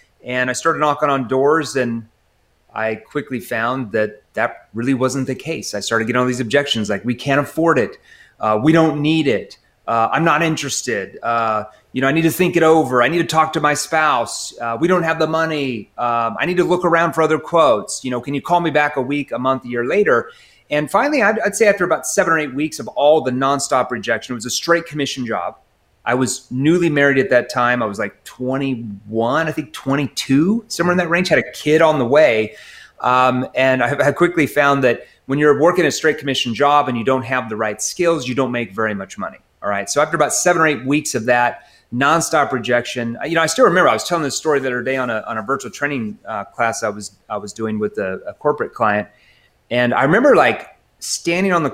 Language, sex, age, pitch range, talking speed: English, male, 30-49, 120-160 Hz, 240 wpm